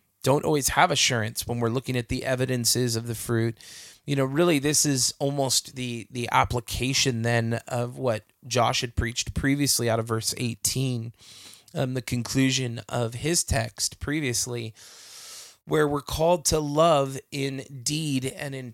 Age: 20-39